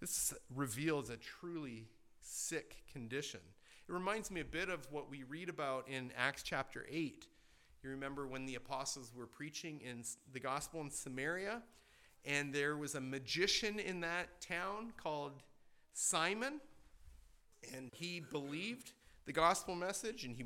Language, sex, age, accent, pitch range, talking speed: English, male, 40-59, American, 135-195 Hz, 145 wpm